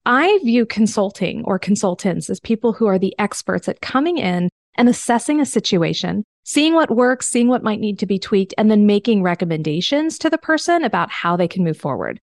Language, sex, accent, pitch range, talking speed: English, female, American, 190-255 Hz, 200 wpm